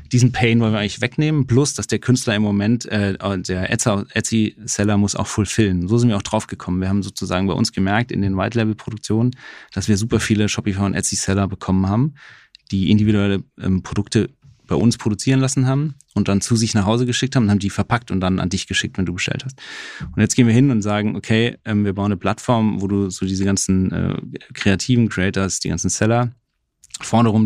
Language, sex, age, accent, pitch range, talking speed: German, male, 30-49, German, 95-115 Hz, 210 wpm